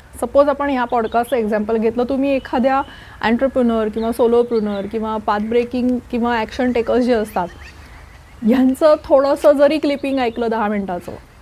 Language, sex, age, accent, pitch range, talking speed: Marathi, female, 30-49, native, 210-275 Hz, 130 wpm